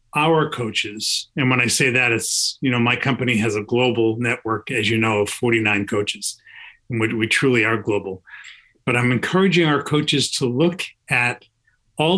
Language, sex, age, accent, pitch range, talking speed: English, male, 40-59, American, 120-150 Hz, 180 wpm